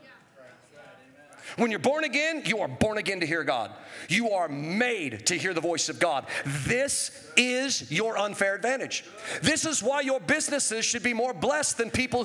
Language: English